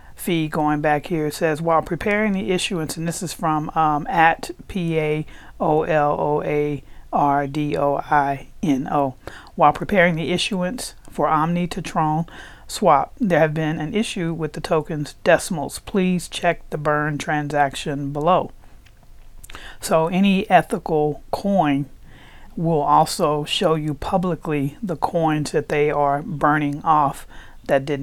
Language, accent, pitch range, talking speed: English, American, 150-170 Hz, 125 wpm